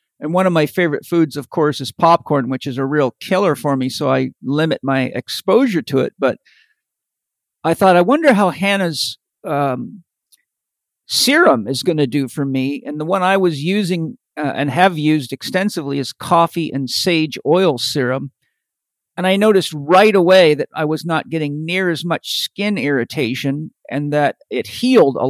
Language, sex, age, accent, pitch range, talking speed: English, male, 50-69, American, 135-185 Hz, 180 wpm